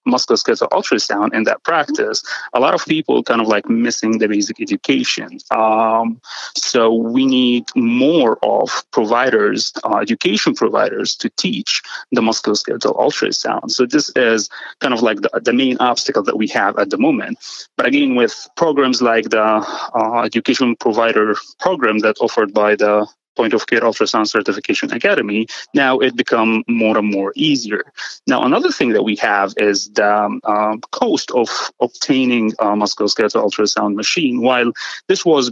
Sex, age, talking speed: male, 30-49, 155 wpm